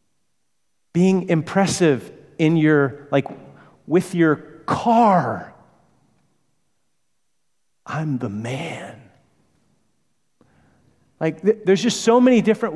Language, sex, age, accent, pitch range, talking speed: English, male, 40-59, American, 135-190 Hz, 80 wpm